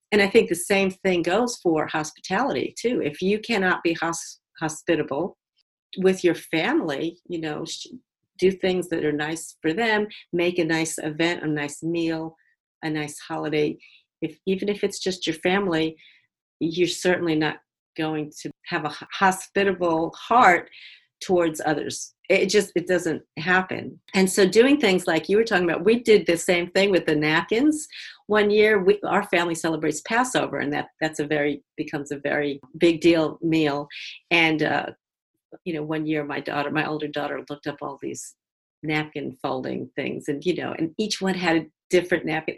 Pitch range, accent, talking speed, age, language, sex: 155-195 Hz, American, 175 wpm, 50-69, English, female